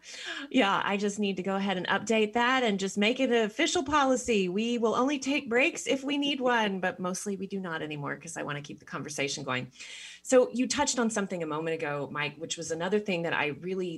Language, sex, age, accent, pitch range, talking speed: English, female, 30-49, American, 155-225 Hz, 240 wpm